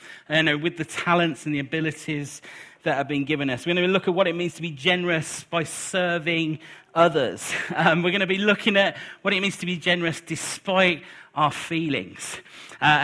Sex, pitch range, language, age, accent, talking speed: male, 145-180 Hz, English, 40-59, British, 200 wpm